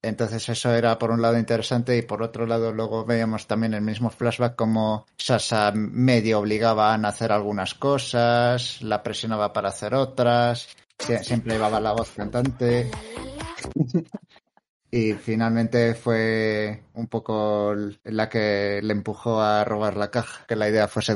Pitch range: 110-120 Hz